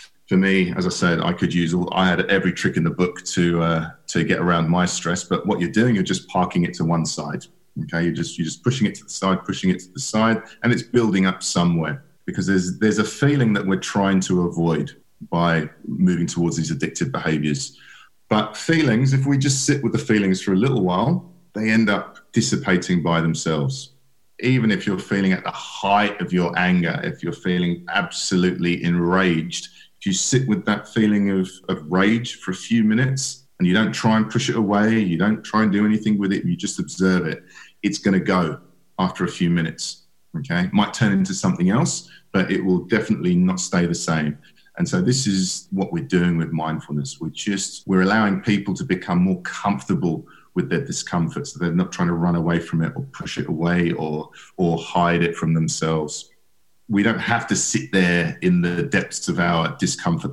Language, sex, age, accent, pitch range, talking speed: English, male, 40-59, British, 85-110 Hz, 205 wpm